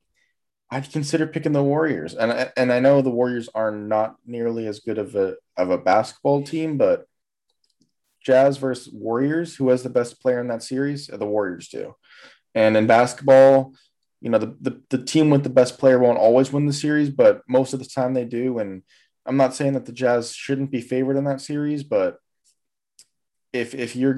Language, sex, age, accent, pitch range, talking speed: English, male, 20-39, American, 115-140 Hz, 195 wpm